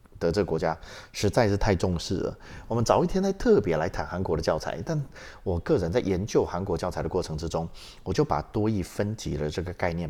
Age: 30-49